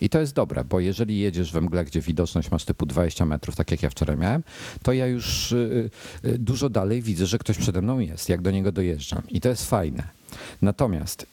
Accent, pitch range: native, 90-115 Hz